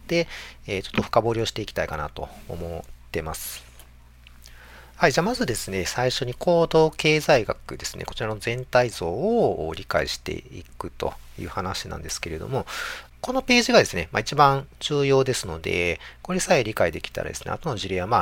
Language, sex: Japanese, male